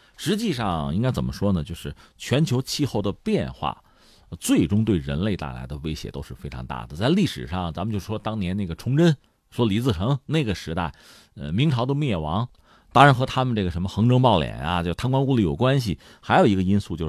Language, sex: Chinese, male